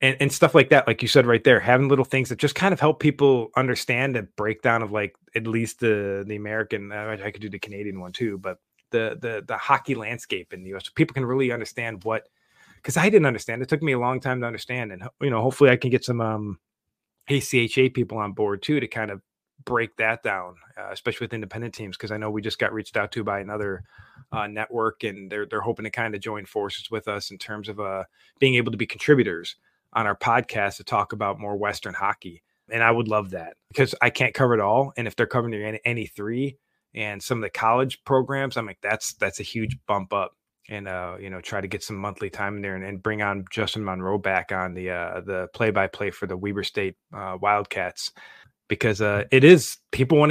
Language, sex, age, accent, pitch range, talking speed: English, male, 20-39, American, 100-125 Hz, 235 wpm